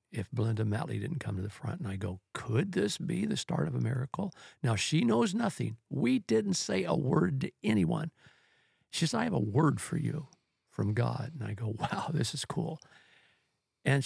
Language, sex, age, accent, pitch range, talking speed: English, male, 50-69, American, 115-140 Hz, 205 wpm